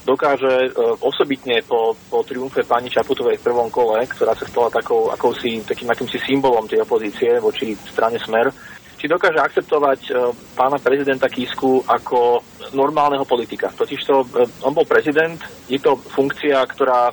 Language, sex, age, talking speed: Slovak, male, 30-49, 145 wpm